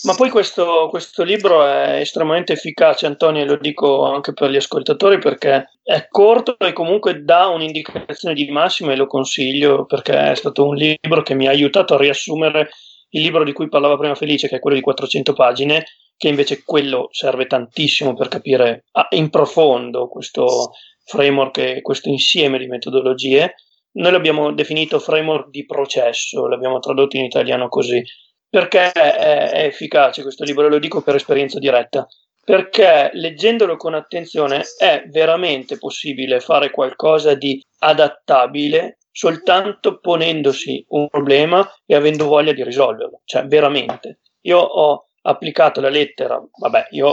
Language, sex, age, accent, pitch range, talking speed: Italian, male, 30-49, native, 135-155 Hz, 150 wpm